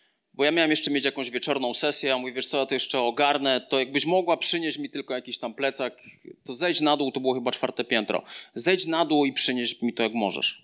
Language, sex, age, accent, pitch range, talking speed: Polish, male, 30-49, native, 135-185 Hz, 245 wpm